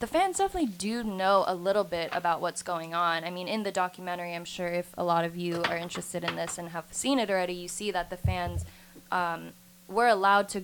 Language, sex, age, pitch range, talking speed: English, female, 20-39, 175-195 Hz, 235 wpm